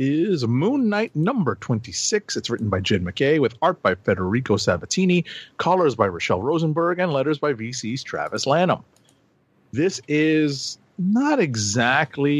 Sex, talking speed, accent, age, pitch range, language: male, 140 wpm, American, 40-59, 110-155 Hz, English